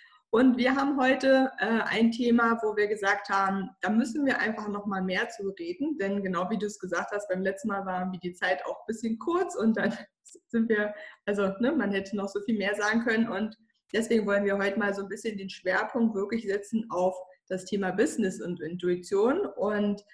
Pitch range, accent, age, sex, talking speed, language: 195-235 Hz, German, 20-39, female, 210 wpm, German